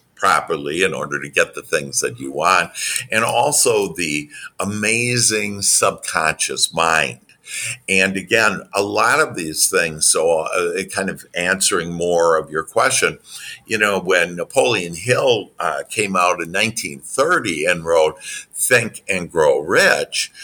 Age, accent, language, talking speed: 60-79, American, English, 140 wpm